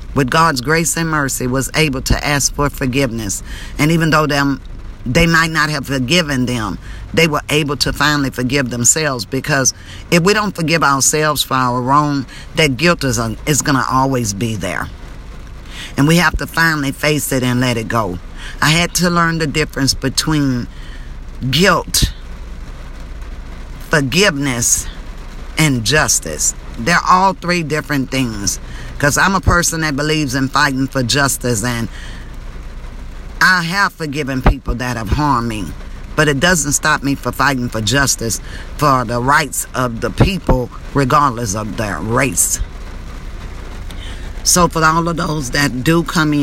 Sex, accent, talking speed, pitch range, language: female, American, 150 wpm, 105-150 Hz, English